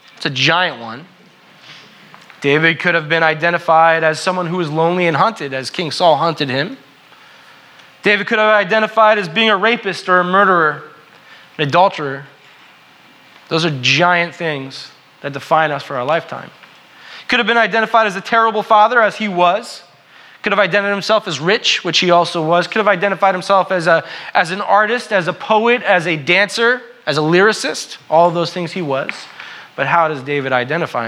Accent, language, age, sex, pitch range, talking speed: American, English, 20-39, male, 155-210 Hz, 180 wpm